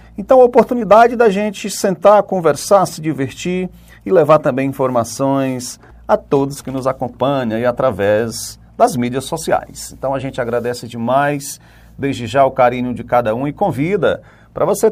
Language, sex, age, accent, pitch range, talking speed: Portuguese, male, 40-59, Brazilian, 125-175 Hz, 155 wpm